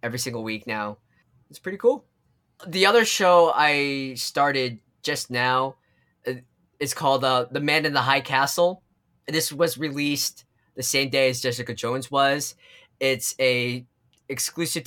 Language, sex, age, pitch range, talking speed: English, male, 20-39, 125-150 Hz, 150 wpm